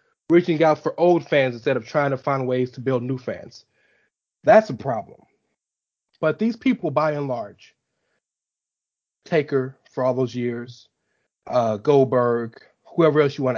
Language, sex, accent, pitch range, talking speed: English, male, American, 135-200 Hz, 155 wpm